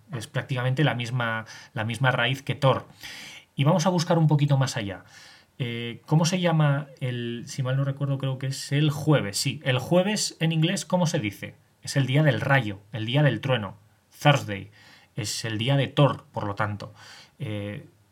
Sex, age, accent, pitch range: male, 20-39, Spanish, 115-140 Hz